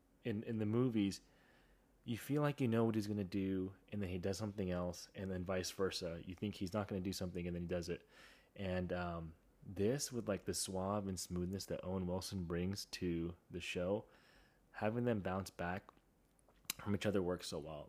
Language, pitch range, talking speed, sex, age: English, 90-105 Hz, 210 wpm, male, 20-39